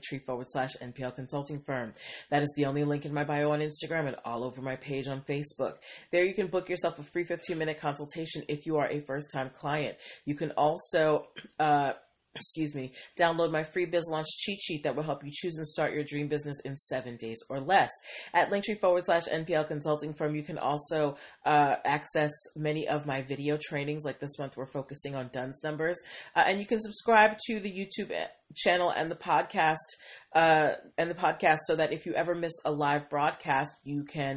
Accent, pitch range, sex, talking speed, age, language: American, 145-170 Hz, female, 210 wpm, 30-49, English